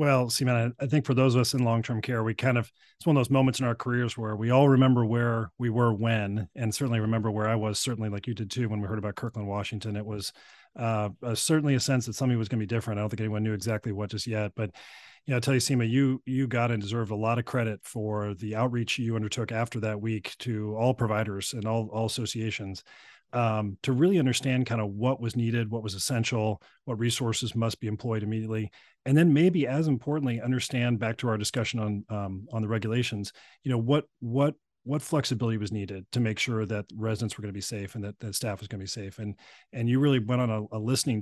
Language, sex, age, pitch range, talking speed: English, male, 40-59, 105-120 Hz, 245 wpm